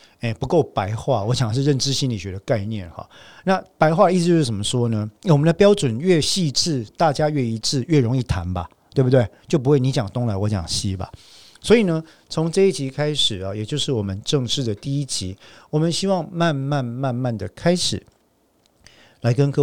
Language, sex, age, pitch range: Chinese, male, 50-69, 110-140 Hz